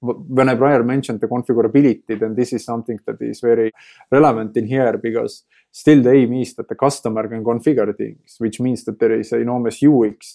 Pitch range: 115-130 Hz